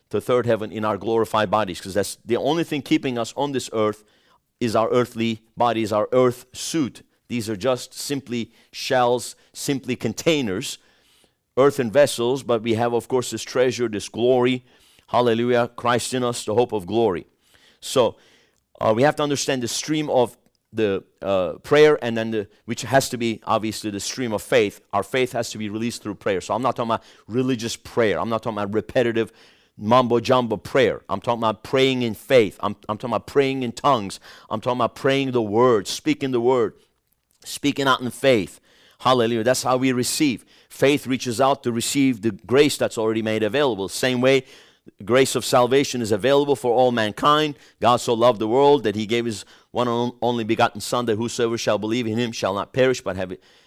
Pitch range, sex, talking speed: 110-130 Hz, male, 195 wpm